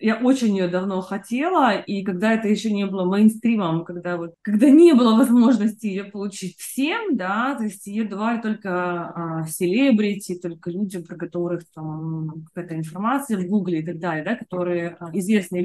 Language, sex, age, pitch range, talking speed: Russian, female, 20-39, 180-265 Hz, 170 wpm